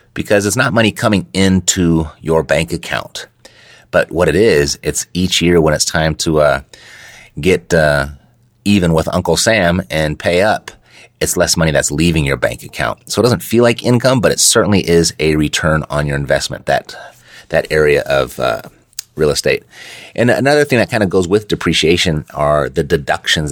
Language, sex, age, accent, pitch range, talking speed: English, male, 30-49, American, 80-100 Hz, 185 wpm